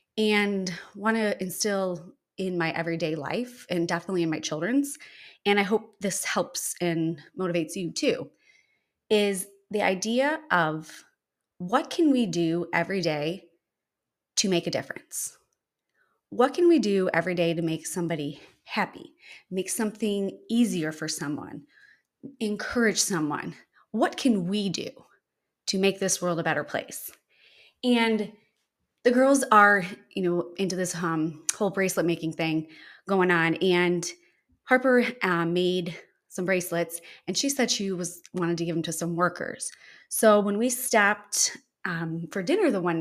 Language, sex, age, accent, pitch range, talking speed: English, female, 30-49, American, 170-215 Hz, 150 wpm